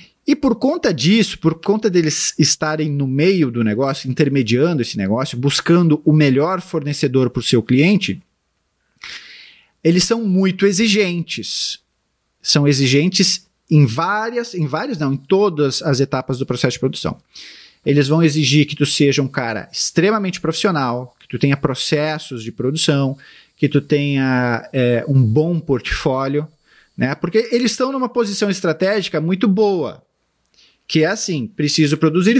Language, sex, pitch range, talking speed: Portuguese, male, 135-190 Hz, 145 wpm